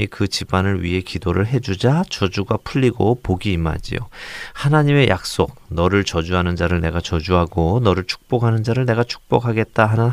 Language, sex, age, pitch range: Korean, male, 40-59, 90-120 Hz